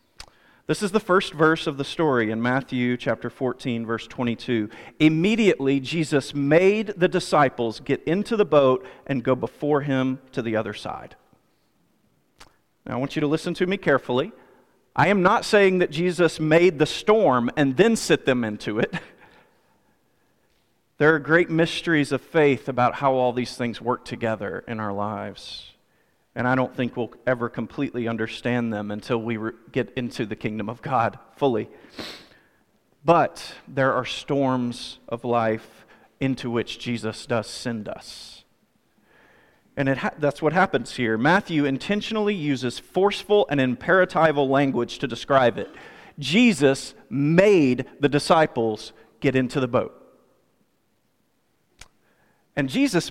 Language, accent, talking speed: English, American, 140 wpm